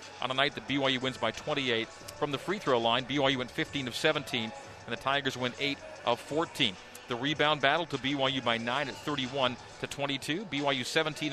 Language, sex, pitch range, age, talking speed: English, male, 125-155 Hz, 40-59, 200 wpm